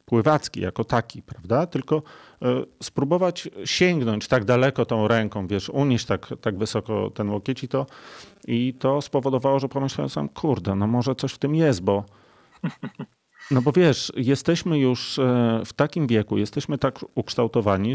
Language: Polish